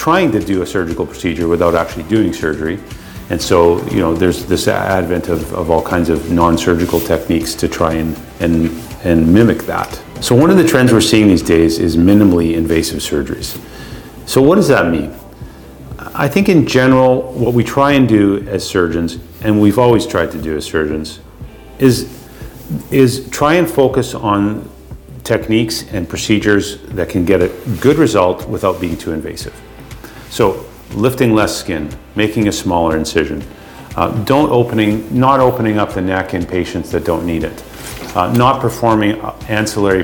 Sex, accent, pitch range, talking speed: male, American, 85-115 Hz, 170 wpm